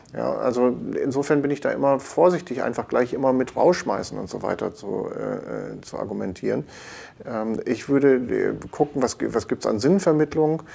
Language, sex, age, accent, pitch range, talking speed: German, male, 50-69, German, 110-135 Hz, 155 wpm